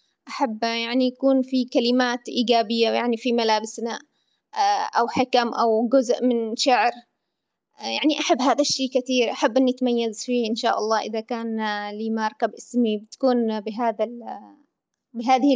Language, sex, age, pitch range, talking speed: Arabic, female, 20-39, 225-255 Hz, 135 wpm